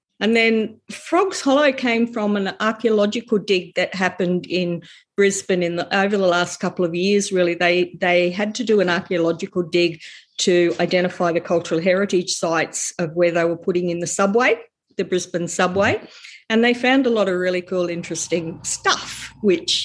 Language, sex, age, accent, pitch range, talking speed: English, female, 50-69, Australian, 175-225 Hz, 175 wpm